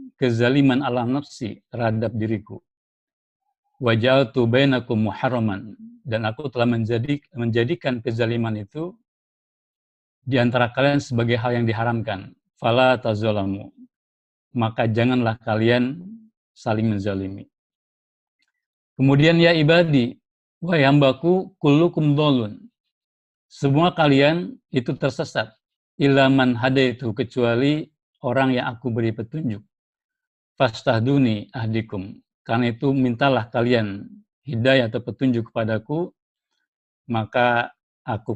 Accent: native